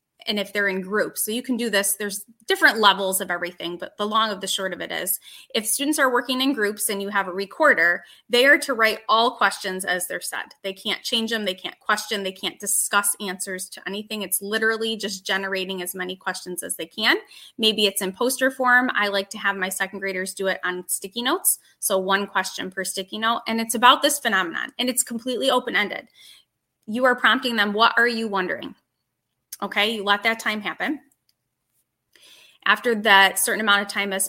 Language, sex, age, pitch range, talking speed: English, female, 20-39, 190-230 Hz, 210 wpm